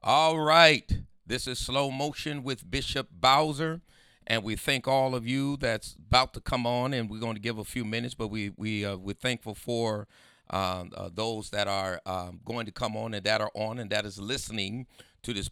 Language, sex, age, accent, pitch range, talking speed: English, male, 40-59, American, 100-125 Hz, 215 wpm